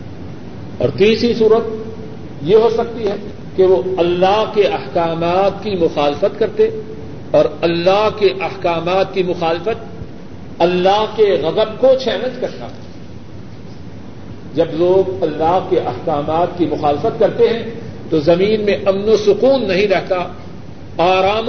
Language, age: Urdu, 50-69